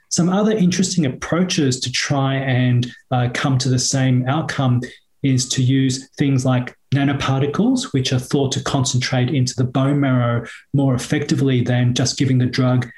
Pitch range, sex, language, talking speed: 125-140 Hz, male, English, 160 wpm